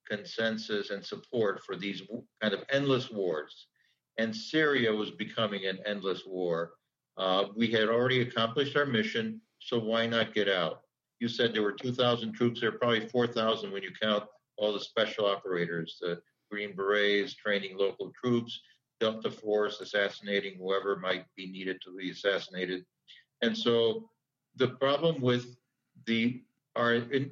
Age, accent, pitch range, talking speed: 60-79, American, 105-130 Hz, 150 wpm